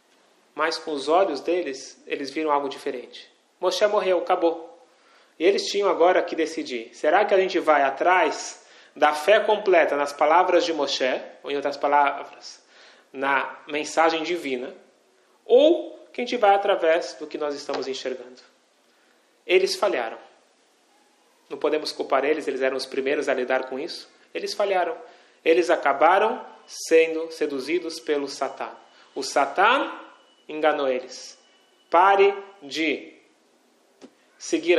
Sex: male